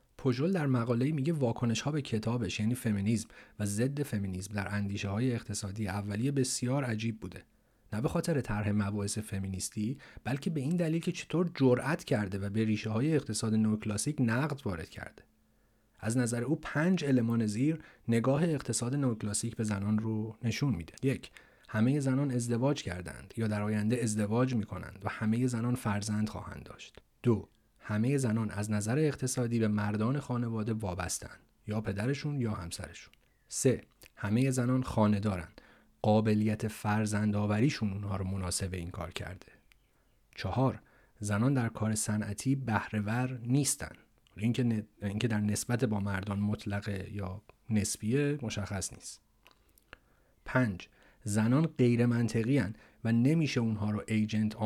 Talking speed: 140 wpm